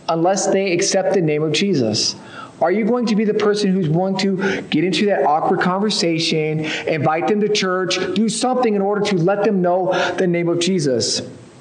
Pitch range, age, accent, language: 170-205 Hz, 40-59, American, English